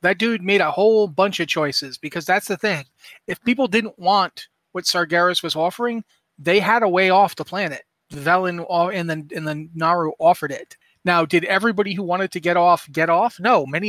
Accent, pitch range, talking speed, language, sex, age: American, 165-195 Hz, 200 wpm, English, male, 30-49